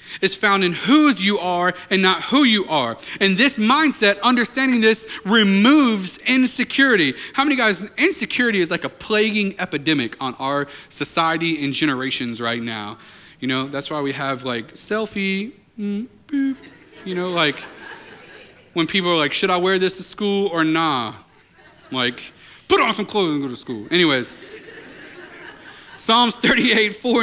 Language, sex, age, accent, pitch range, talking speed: English, male, 30-49, American, 175-230 Hz, 155 wpm